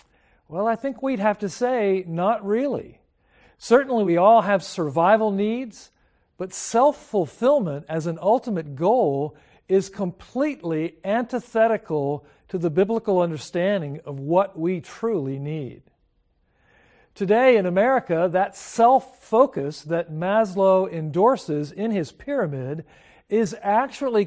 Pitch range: 170-225 Hz